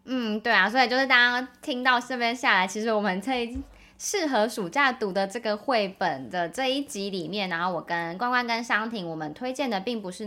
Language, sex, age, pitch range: Chinese, female, 20-39, 190-255 Hz